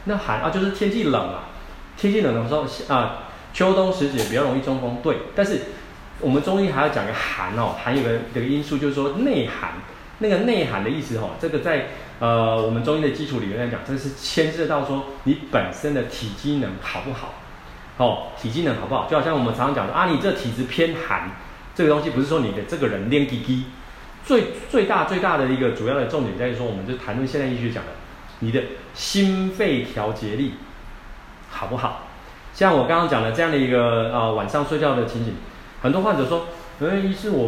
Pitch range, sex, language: 115-150 Hz, male, Chinese